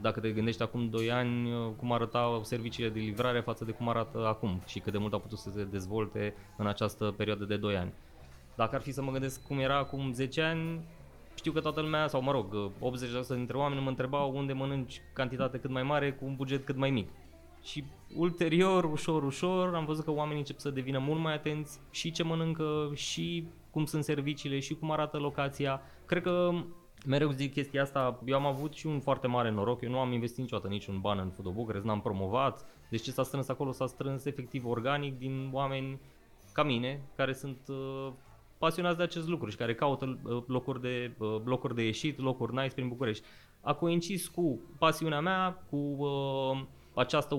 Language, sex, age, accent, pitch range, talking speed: Romanian, male, 20-39, native, 115-145 Hz, 200 wpm